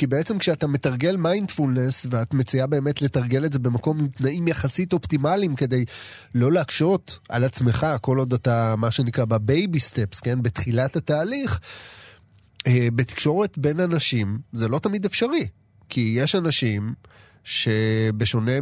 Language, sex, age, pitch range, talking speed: Hebrew, male, 30-49, 120-165 Hz, 130 wpm